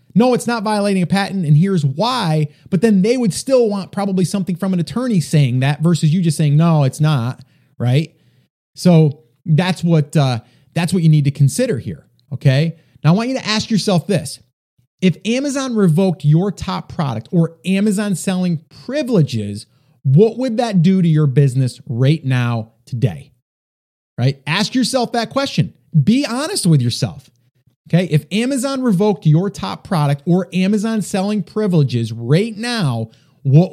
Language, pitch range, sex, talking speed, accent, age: English, 140-205 Hz, male, 165 wpm, American, 30-49